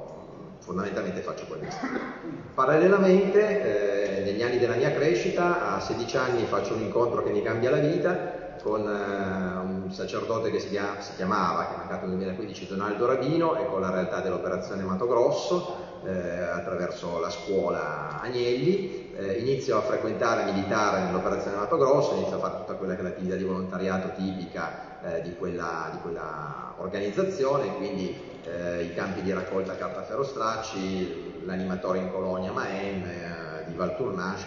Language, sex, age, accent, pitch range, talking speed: Italian, male, 30-49, native, 95-125 Hz, 155 wpm